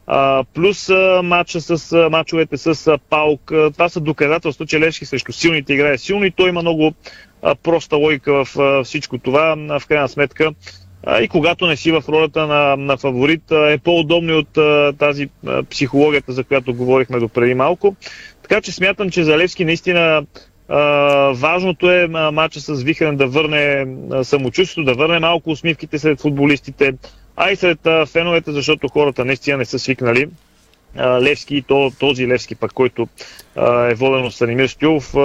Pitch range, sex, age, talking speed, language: 135-160 Hz, male, 30-49, 180 wpm, Bulgarian